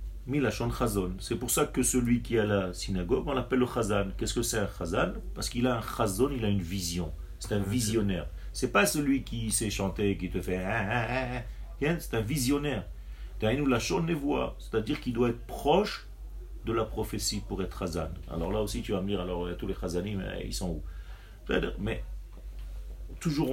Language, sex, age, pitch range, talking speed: French, male, 40-59, 90-125 Hz, 180 wpm